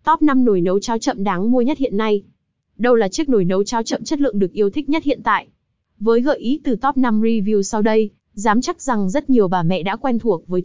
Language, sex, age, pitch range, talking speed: Vietnamese, female, 20-39, 195-245 Hz, 260 wpm